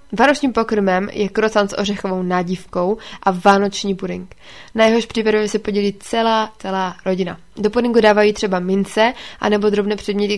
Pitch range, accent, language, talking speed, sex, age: 195-225 Hz, native, Czech, 150 wpm, female, 20-39